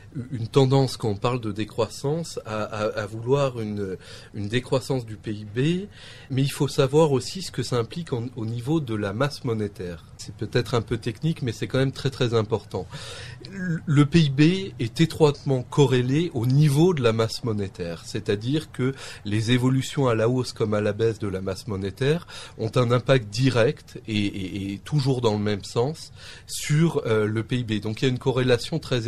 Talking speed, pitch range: 195 wpm, 105-135 Hz